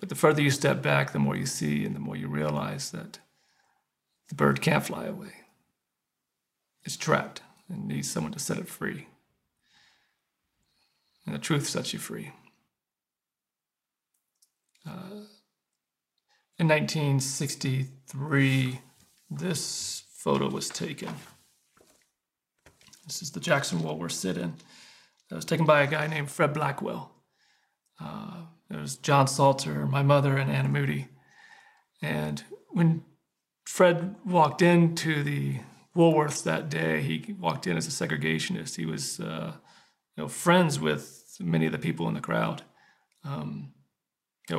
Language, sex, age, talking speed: English, male, 40-59, 135 wpm